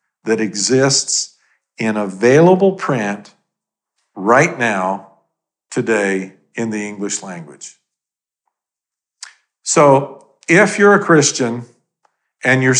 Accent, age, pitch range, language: American, 50-69, 120-165 Hz, English